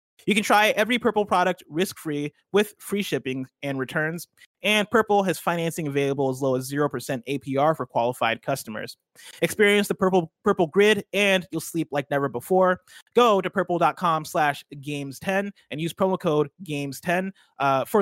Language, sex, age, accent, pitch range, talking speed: English, male, 30-49, American, 135-185 Hz, 160 wpm